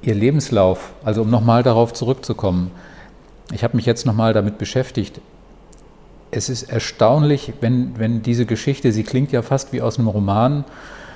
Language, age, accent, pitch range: German, 40-59, German, 110-130 Hz